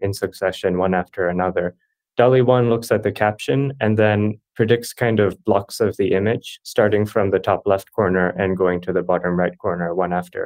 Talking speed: 195 wpm